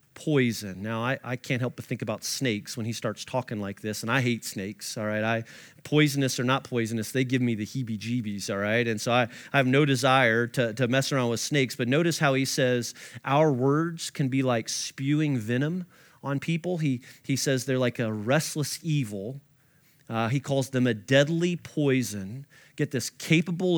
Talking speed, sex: 195 wpm, male